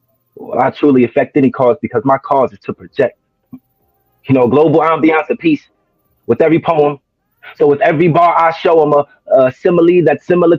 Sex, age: male, 30-49